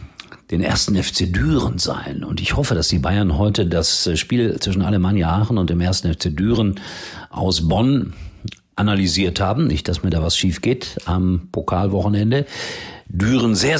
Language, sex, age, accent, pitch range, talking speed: German, male, 50-69, German, 90-115 Hz, 160 wpm